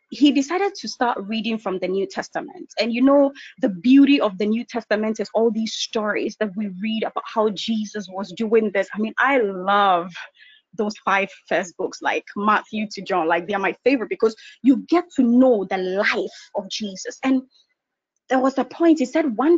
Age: 20-39